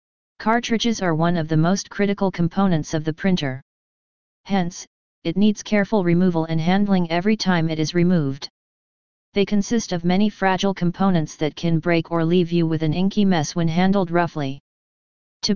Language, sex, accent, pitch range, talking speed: English, female, American, 165-195 Hz, 165 wpm